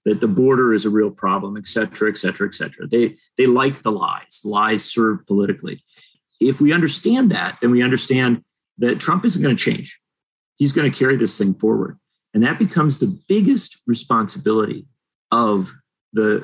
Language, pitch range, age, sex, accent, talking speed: English, 110-165 Hz, 50-69, male, American, 180 wpm